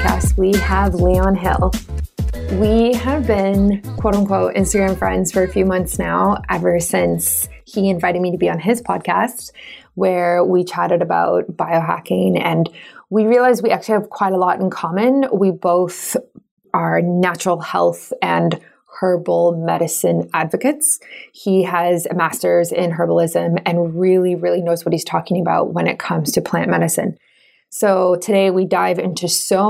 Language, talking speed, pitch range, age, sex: English, 155 wpm, 170-200 Hz, 20-39, female